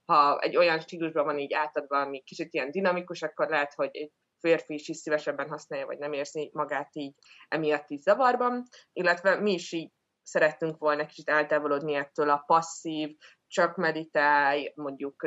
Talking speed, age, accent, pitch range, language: 165 wpm, 20-39, Finnish, 145-175 Hz, English